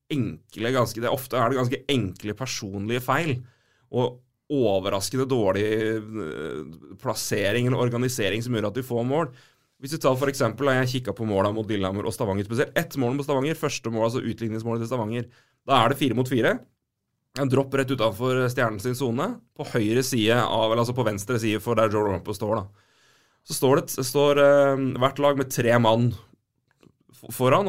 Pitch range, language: 120-170 Hz, English